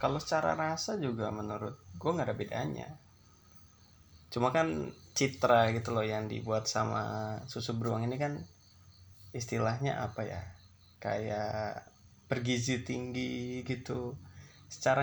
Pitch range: 105-130 Hz